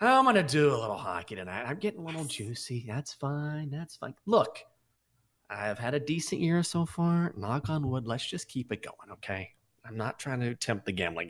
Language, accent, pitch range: English, American, 110-155 Hz